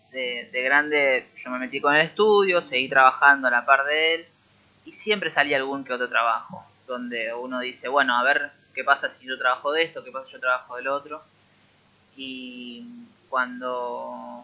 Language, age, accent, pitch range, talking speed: Spanish, 20-39, Argentinian, 125-155 Hz, 185 wpm